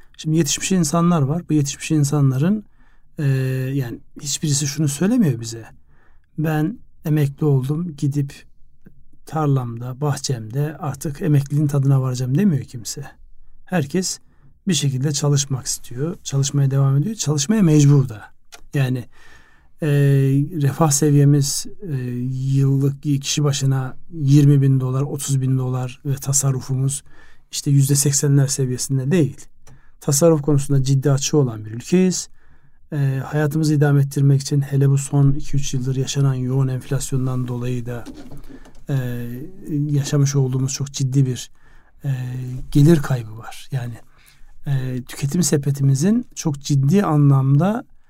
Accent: native